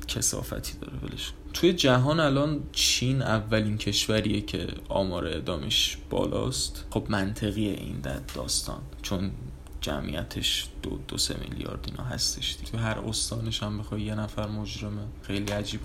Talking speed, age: 140 wpm, 20-39